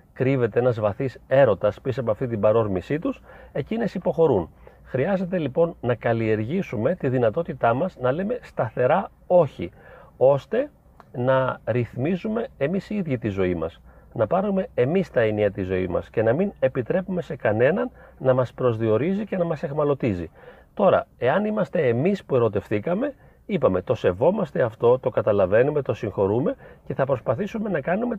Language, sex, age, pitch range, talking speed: Greek, male, 40-59, 125-195 Hz, 155 wpm